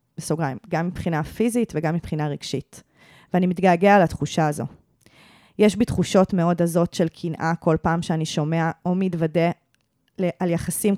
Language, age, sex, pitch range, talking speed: Hebrew, 20-39, female, 160-195 Hz, 135 wpm